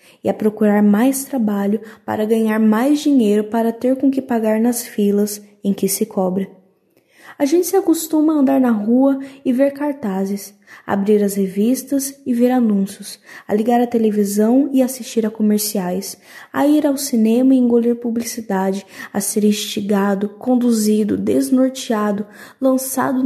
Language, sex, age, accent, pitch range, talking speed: Portuguese, female, 10-29, Brazilian, 200-260 Hz, 150 wpm